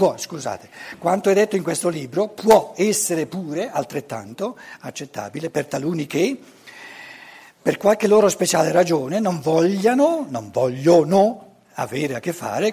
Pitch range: 135-215 Hz